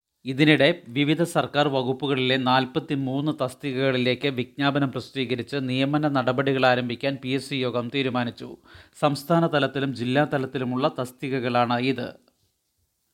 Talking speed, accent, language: 100 wpm, native, Malayalam